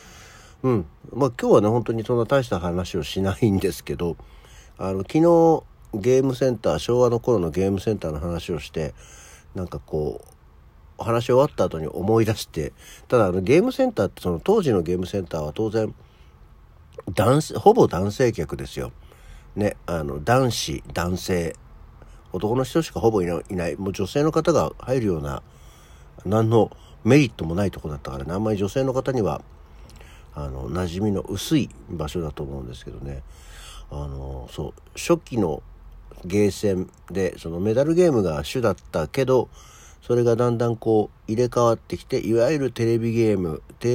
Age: 60-79